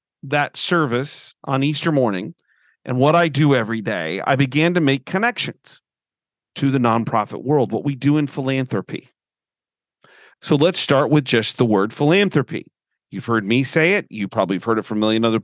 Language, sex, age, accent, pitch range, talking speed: English, male, 40-59, American, 120-180 Hz, 185 wpm